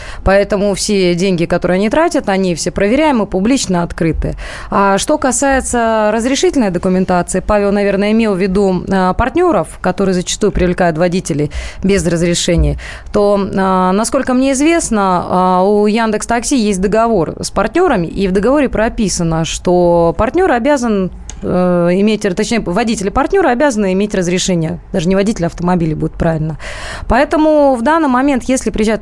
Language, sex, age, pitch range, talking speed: Russian, female, 20-39, 180-230 Hz, 135 wpm